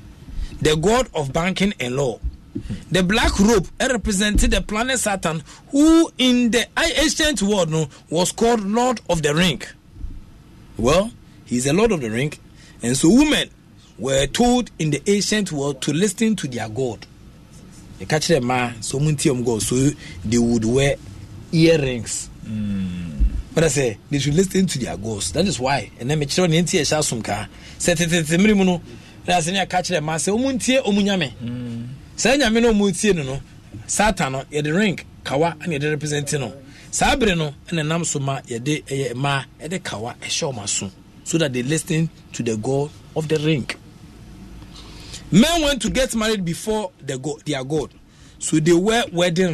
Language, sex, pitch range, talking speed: English, male, 135-205 Hz, 155 wpm